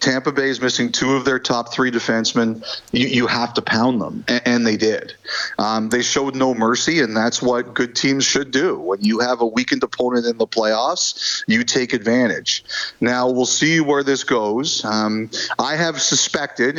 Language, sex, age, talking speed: English, male, 40-59, 195 wpm